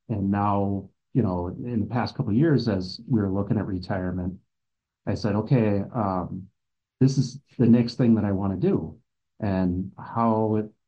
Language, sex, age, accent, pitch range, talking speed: English, male, 30-49, American, 95-115 Hz, 175 wpm